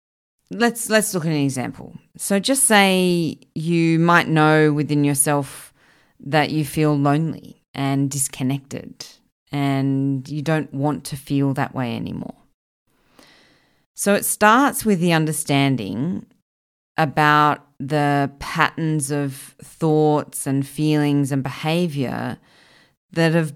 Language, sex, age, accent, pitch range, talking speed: English, female, 30-49, Australian, 135-160 Hz, 115 wpm